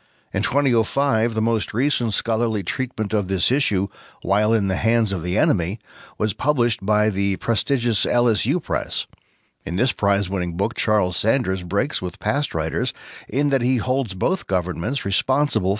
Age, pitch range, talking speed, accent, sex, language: 60-79, 95-120 Hz, 155 wpm, American, male, English